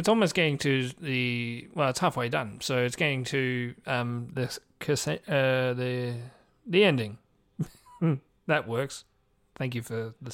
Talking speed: 145 wpm